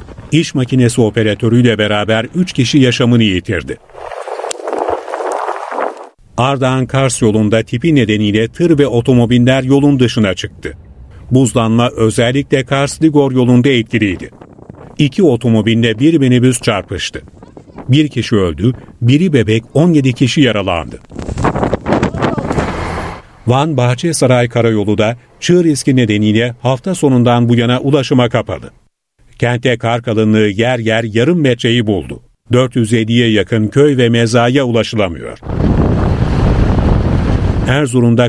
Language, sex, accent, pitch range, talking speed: Turkish, male, native, 110-135 Hz, 100 wpm